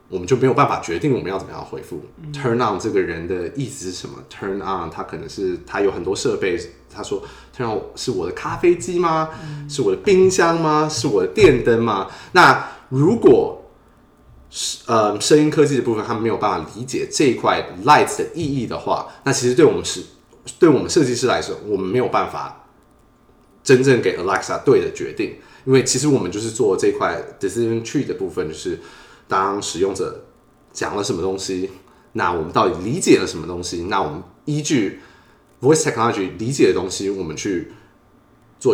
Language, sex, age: Chinese, male, 20-39